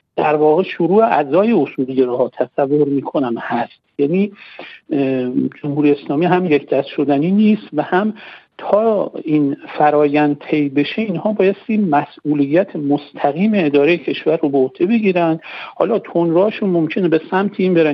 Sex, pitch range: male, 145-195 Hz